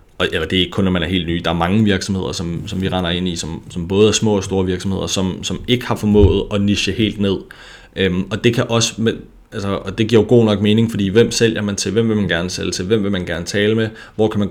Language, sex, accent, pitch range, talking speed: Danish, male, native, 95-110 Hz, 285 wpm